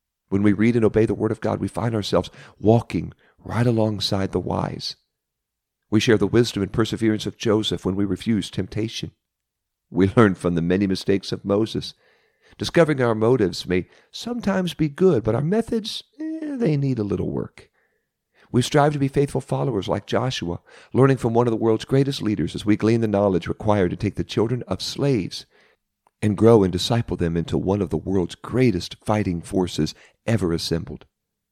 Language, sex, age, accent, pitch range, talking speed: English, male, 50-69, American, 90-120 Hz, 185 wpm